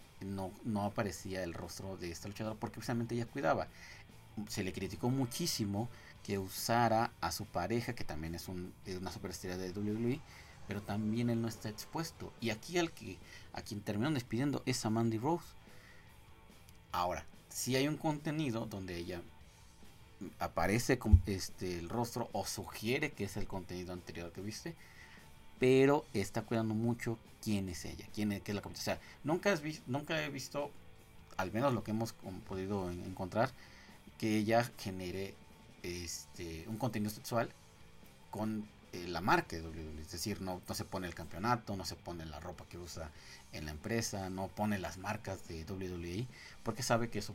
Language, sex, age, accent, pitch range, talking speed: Spanish, male, 40-59, Mexican, 90-115 Hz, 165 wpm